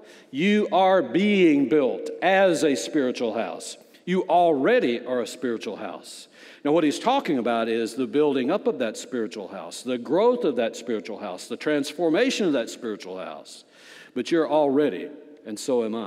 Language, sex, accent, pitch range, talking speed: English, male, American, 135-205 Hz, 170 wpm